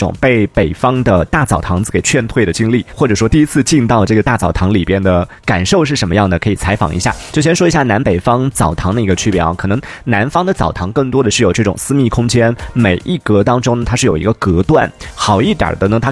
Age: 30-49